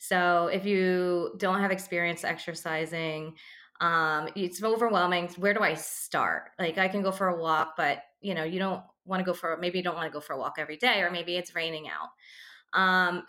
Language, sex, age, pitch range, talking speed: English, female, 20-39, 170-190 Hz, 210 wpm